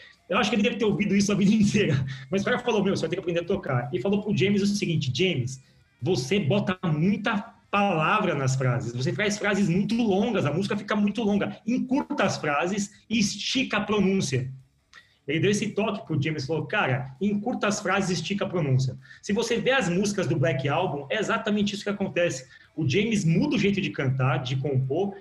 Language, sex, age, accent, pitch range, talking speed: Portuguese, male, 30-49, Brazilian, 160-210 Hz, 210 wpm